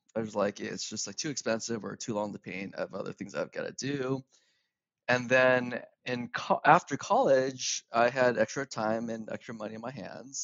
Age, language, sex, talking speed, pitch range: 20-39, English, male, 200 wpm, 115-145 Hz